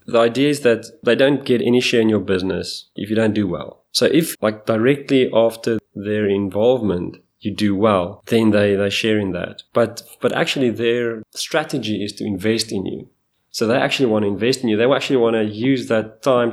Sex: male